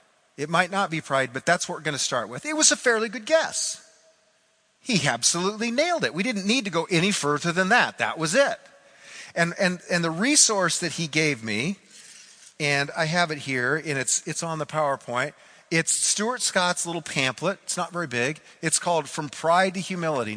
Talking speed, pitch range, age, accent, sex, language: 205 wpm, 150-200 Hz, 40-59, American, male, English